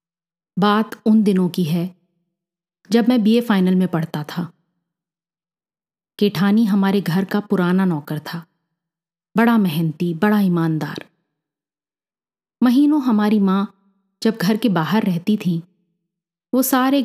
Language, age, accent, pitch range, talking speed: Hindi, 30-49, native, 170-210 Hz, 120 wpm